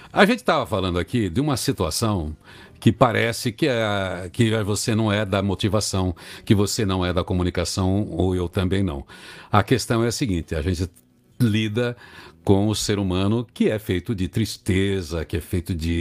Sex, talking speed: male, 180 wpm